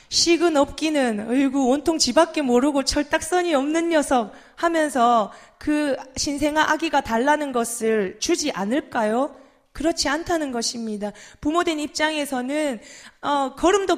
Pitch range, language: 240-325 Hz, Korean